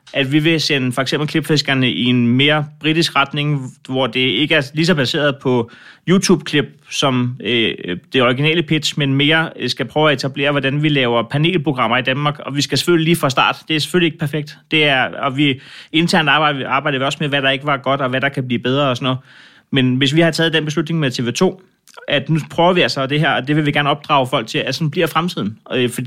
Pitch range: 135-160 Hz